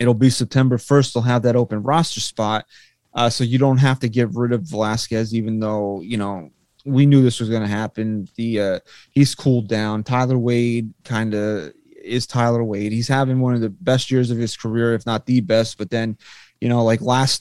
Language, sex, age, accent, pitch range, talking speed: English, male, 30-49, American, 115-135 Hz, 215 wpm